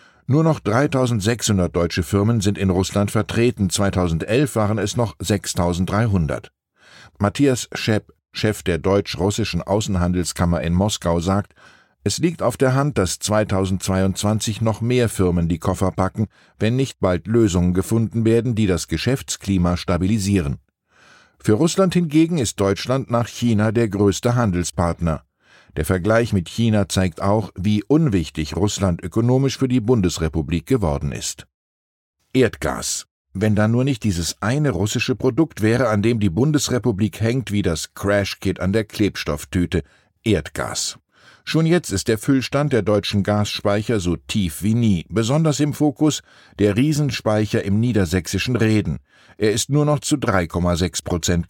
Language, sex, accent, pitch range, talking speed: German, male, German, 90-120 Hz, 140 wpm